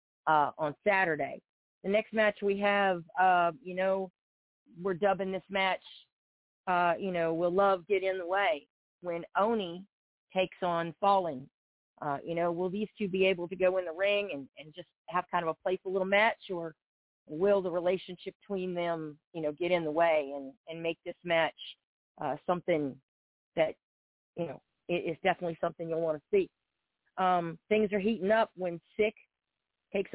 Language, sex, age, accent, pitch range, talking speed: English, female, 40-59, American, 160-195 Hz, 180 wpm